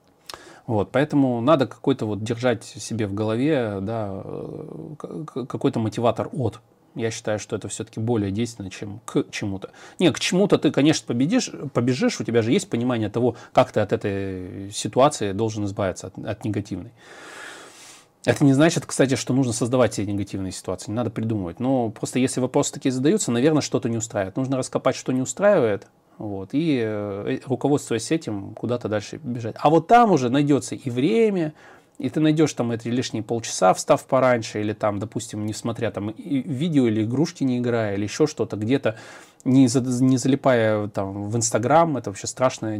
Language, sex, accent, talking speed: Russian, male, native, 170 wpm